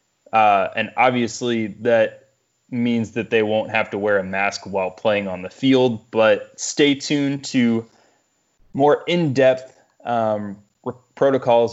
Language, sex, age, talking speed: English, male, 20-39, 135 wpm